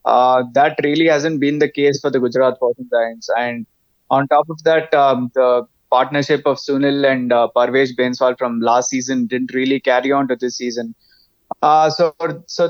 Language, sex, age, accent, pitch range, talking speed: English, male, 20-39, Indian, 125-145 Hz, 185 wpm